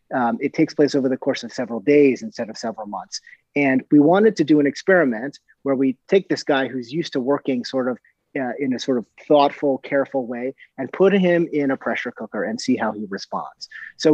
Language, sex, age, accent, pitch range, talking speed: English, male, 30-49, American, 125-165 Hz, 225 wpm